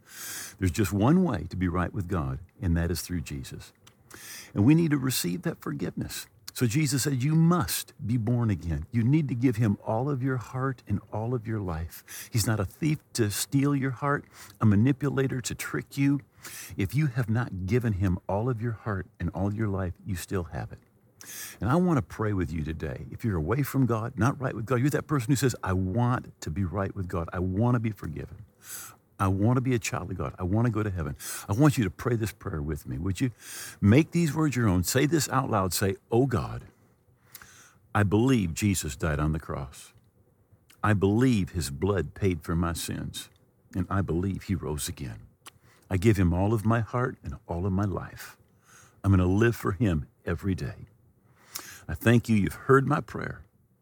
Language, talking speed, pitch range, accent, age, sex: English, 215 wpm, 95-125 Hz, American, 50-69, male